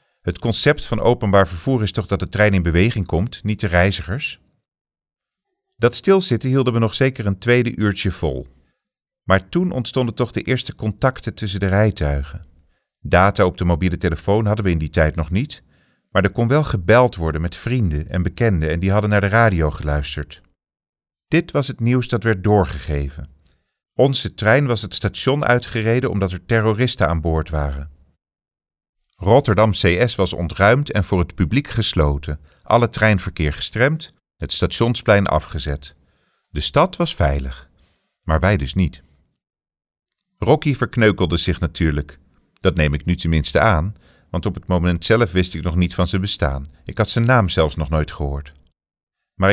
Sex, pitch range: male, 80-115 Hz